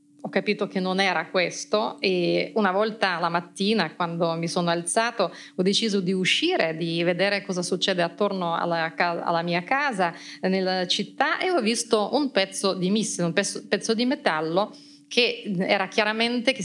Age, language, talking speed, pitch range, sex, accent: 30-49, Italian, 165 wpm, 175-220 Hz, female, native